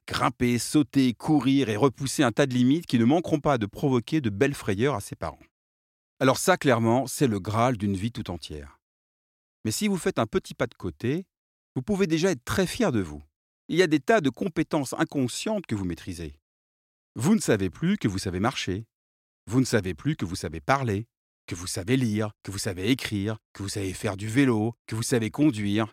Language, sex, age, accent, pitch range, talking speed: French, male, 40-59, French, 95-145 Hz, 215 wpm